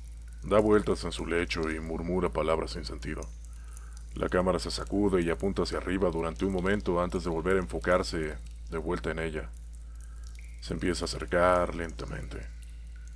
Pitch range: 80-95 Hz